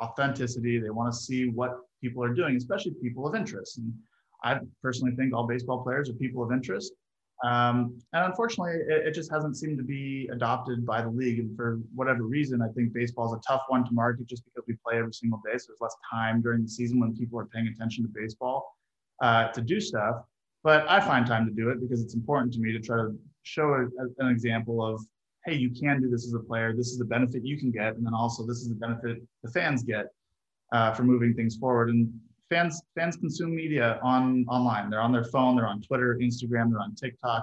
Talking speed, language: 230 wpm, English